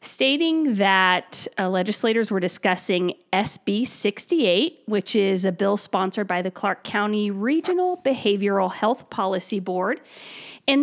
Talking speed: 130 wpm